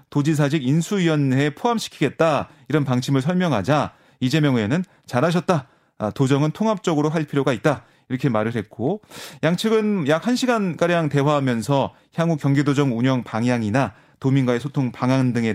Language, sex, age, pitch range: Korean, male, 30-49, 125-165 Hz